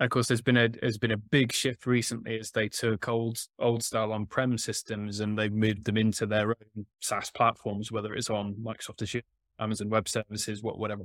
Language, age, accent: English, 20-39, British